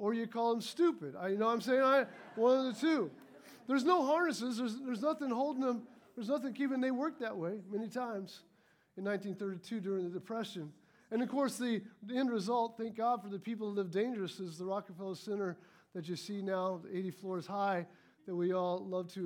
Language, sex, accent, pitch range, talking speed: English, male, American, 200-260 Hz, 220 wpm